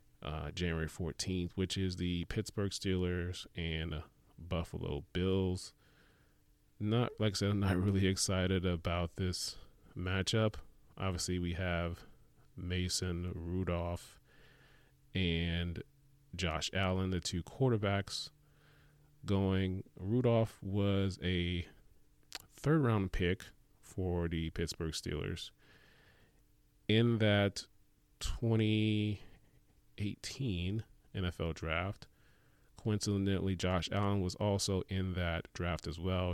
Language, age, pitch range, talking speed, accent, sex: English, 30-49, 85-100 Hz, 100 wpm, American, male